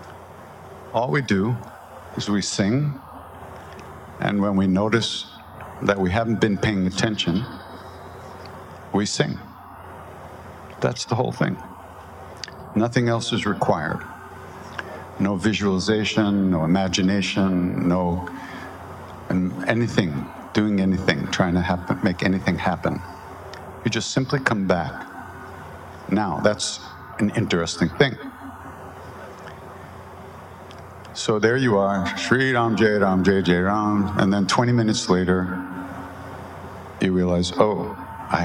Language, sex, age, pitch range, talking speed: English, male, 60-79, 90-105 Hz, 105 wpm